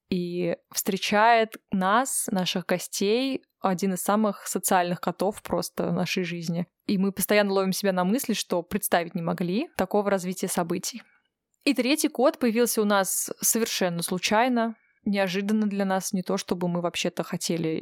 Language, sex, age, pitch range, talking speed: Russian, female, 20-39, 180-225 Hz, 150 wpm